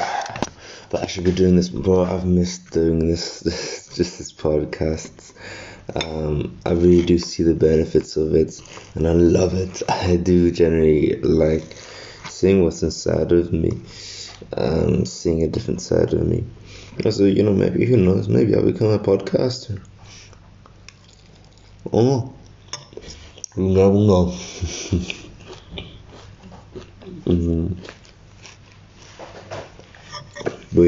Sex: male